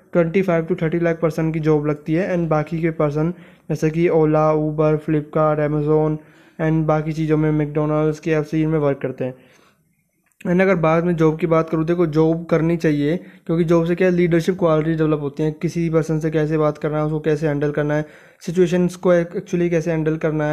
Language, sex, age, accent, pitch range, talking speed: Hindi, male, 20-39, native, 155-170 Hz, 210 wpm